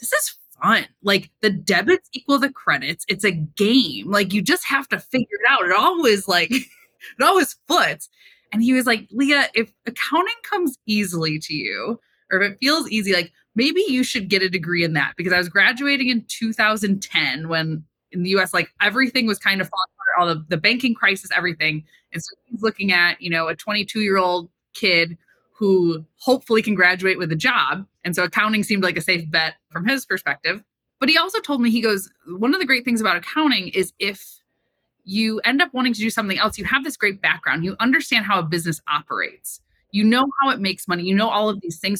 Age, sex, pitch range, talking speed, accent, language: 20-39, female, 170-230 Hz, 215 wpm, American, English